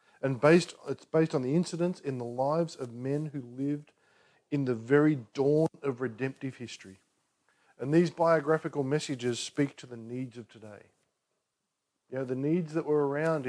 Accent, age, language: Australian, 40-59, English